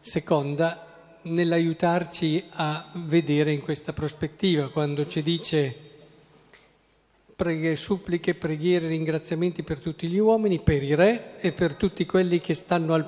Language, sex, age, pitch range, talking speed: Italian, male, 50-69, 145-180 Hz, 130 wpm